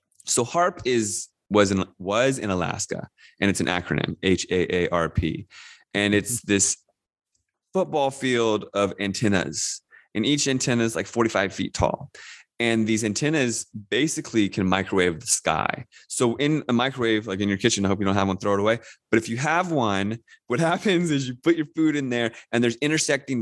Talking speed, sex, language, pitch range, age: 180 wpm, male, English, 100-120 Hz, 20-39